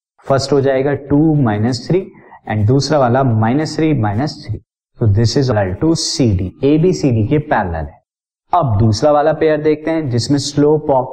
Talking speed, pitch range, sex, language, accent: 155 wpm, 115-150 Hz, male, Hindi, native